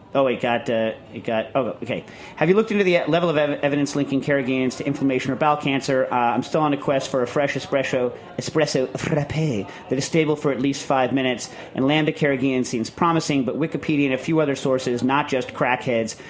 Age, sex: 40-59, male